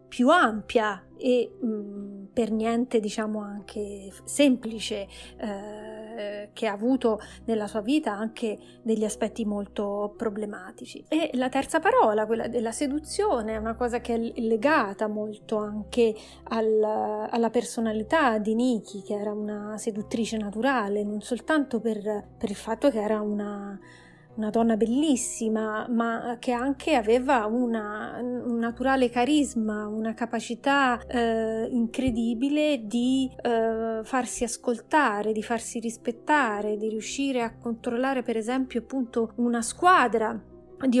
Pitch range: 215-250 Hz